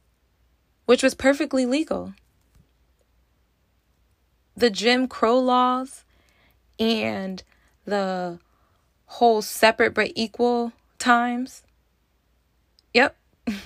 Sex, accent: female, American